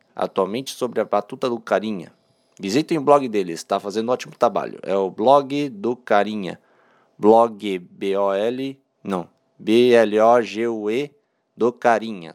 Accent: Brazilian